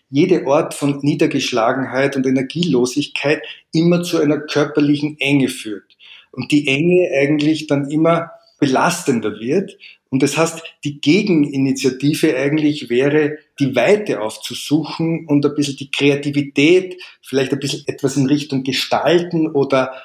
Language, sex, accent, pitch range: German, male, Austrian, 140-160 Hz